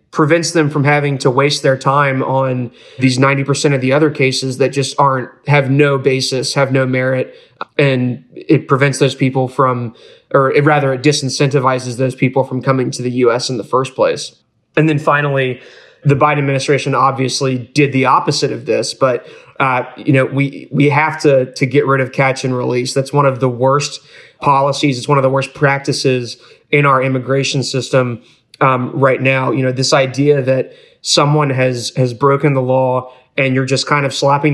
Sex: male